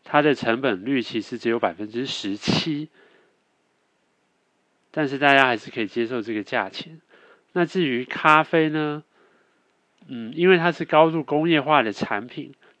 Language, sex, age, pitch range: Chinese, male, 30-49, 115-155 Hz